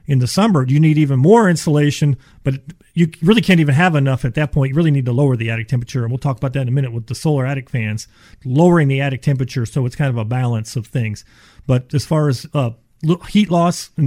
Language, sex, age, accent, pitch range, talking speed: English, male, 40-59, American, 130-165 Hz, 250 wpm